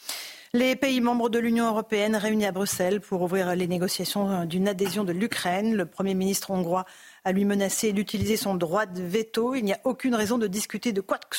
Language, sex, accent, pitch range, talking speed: French, female, French, 175-215 Hz, 205 wpm